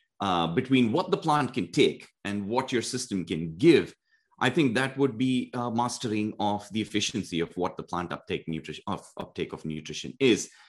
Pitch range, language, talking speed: 95-135 Hz, English, 185 wpm